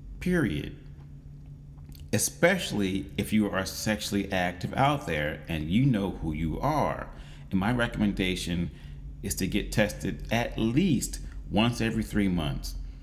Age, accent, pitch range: 30-49, American, 75-110 Hz